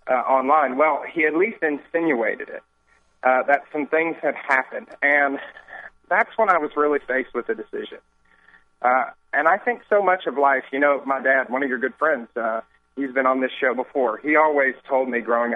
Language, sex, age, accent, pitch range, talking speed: English, male, 40-59, American, 125-155 Hz, 205 wpm